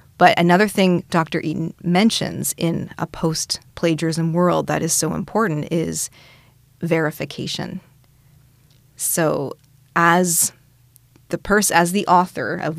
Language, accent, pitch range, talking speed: English, American, 155-175 Hz, 115 wpm